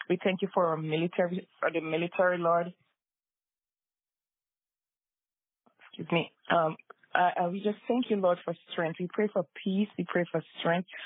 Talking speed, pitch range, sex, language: 165 wpm, 165-210 Hz, female, English